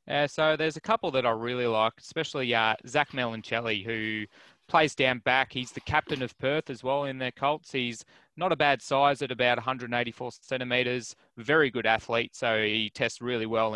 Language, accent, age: English, Australian, 20-39